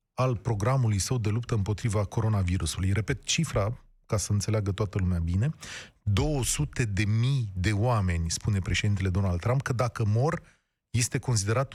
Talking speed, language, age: 150 wpm, Romanian, 30-49